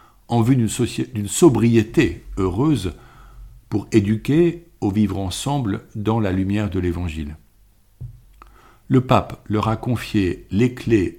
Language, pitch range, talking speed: French, 100-125 Hz, 120 wpm